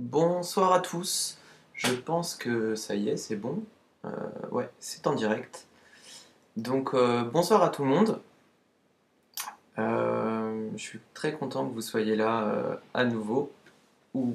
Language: French